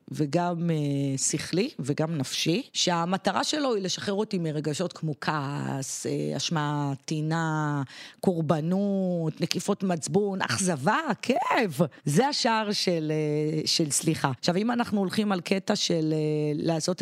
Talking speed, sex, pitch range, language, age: 115 wpm, female, 155-195 Hz, Hebrew, 30-49